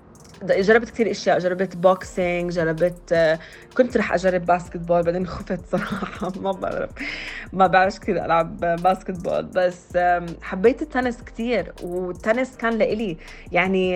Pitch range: 175-210 Hz